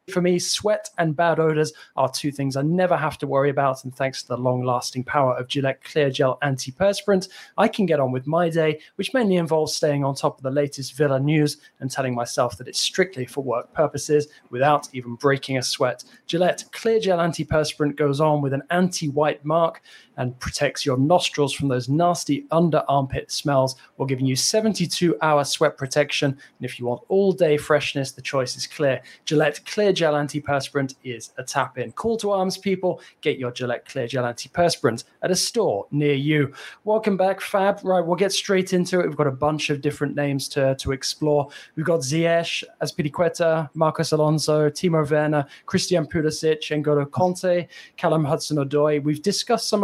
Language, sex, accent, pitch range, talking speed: English, male, British, 135-170 Hz, 185 wpm